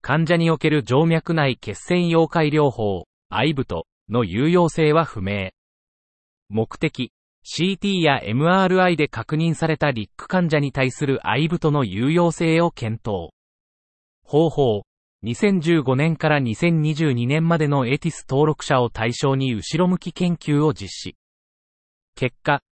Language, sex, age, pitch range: Japanese, male, 40-59, 110-160 Hz